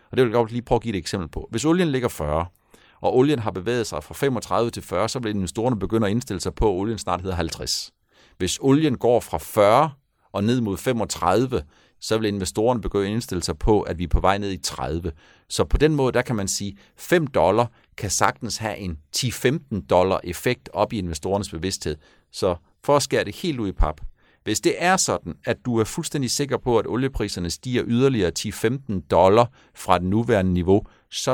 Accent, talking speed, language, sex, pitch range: native, 220 wpm, Danish, male, 90-120 Hz